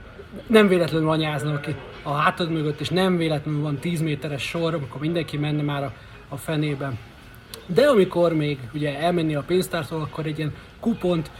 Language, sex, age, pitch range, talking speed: Hungarian, male, 30-49, 160-180 Hz, 170 wpm